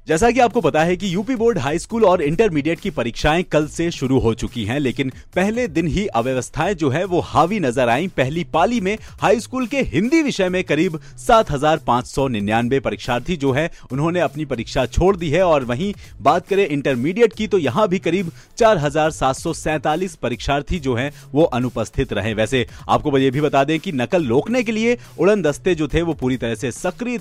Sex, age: male, 40-59